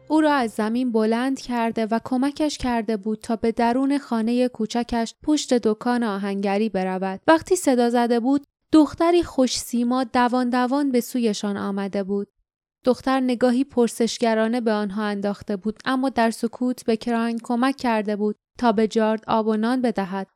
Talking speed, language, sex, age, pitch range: 160 wpm, Persian, female, 10-29, 210-250 Hz